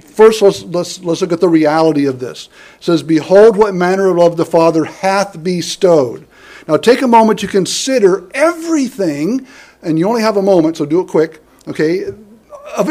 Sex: male